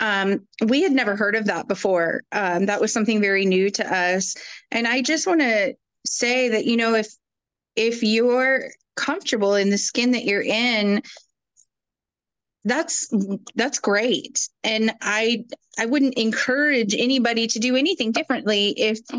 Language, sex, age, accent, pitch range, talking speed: English, female, 30-49, American, 210-255 Hz, 155 wpm